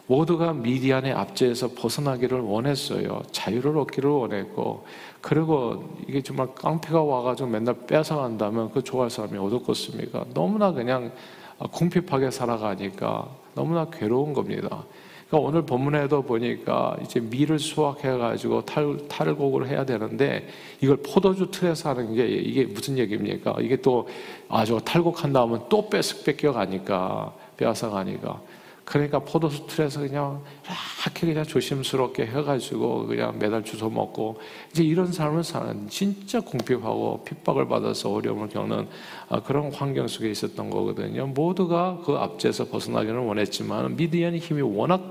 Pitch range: 120-155 Hz